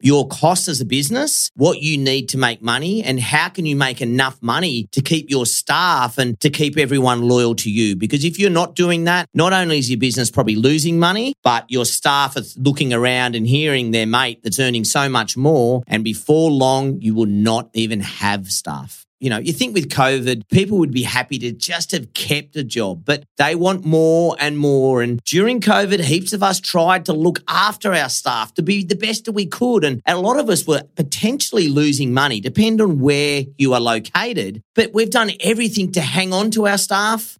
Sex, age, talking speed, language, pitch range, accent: male, 40-59, 215 wpm, English, 125-170 Hz, Australian